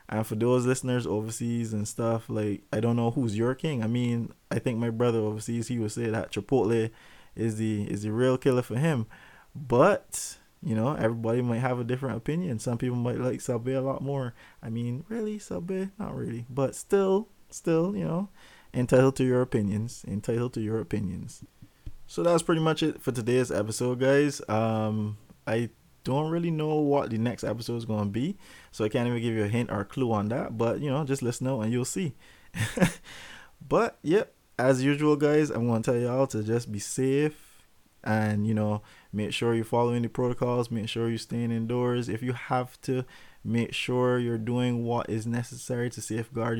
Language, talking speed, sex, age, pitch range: English, 200 wpm, male, 20-39, 110-130 Hz